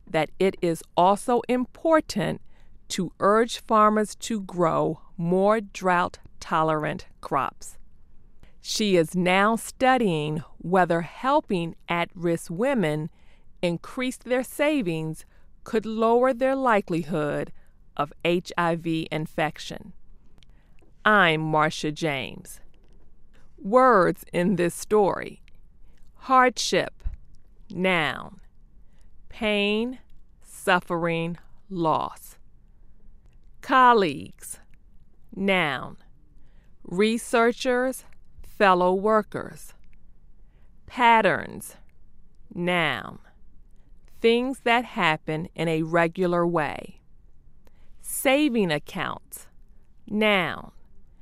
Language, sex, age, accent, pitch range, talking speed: English, female, 40-59, American, 165-230 Hz, 70 wpm